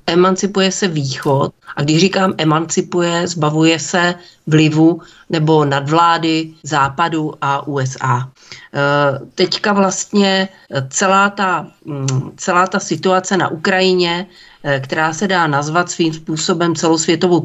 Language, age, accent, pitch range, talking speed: Czech, 40-59, native, 145-180 Hz, 105 wpm